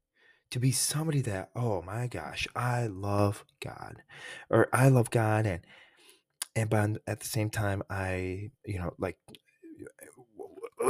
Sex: male